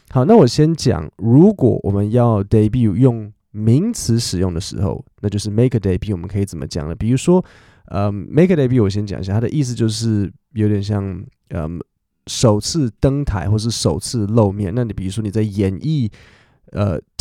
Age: 20-39